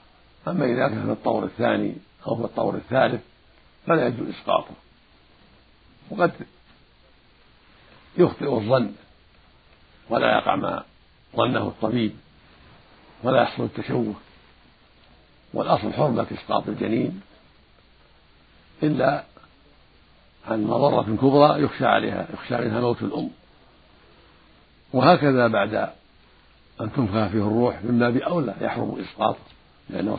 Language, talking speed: Arabic, 95 wpm